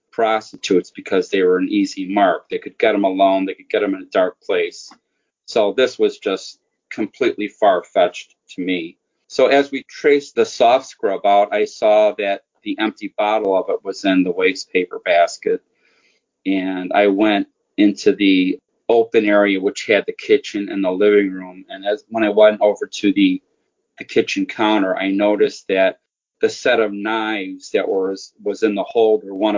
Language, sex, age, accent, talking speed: English, male, 40-59, American, 185 wpm